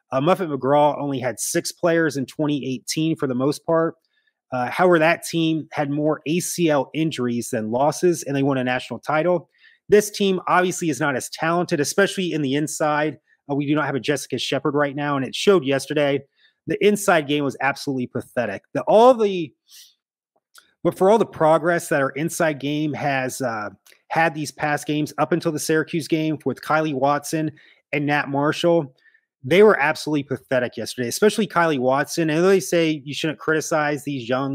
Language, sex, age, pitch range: English, male, 30-49, 140-170 Hz